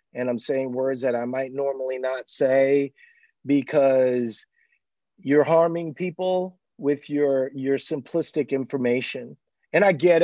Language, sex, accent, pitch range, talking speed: English, male, American, 135-165 Hz, 130 wpm